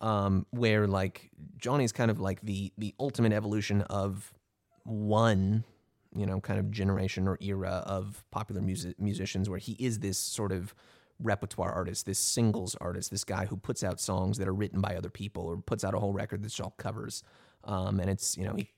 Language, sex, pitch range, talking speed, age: English, male, 95-110 Hz, 200 wpm, 20-39